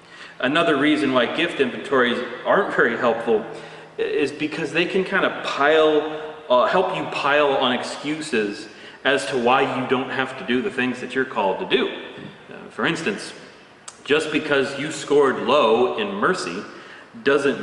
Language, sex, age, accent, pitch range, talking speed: English, male, 30-49, American, 130-180 Hz, 160 wpm